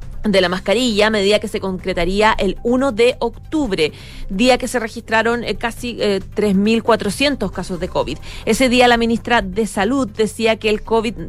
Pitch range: 185-225 Hz